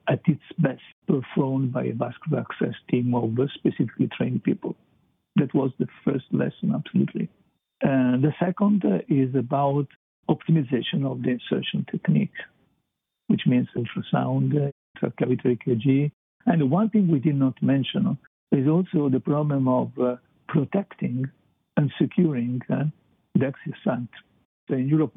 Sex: male